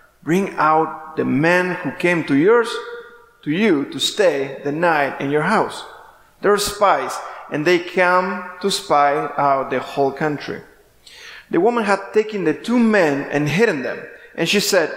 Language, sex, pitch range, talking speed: English, male, 145-205 Hz, 165 wpm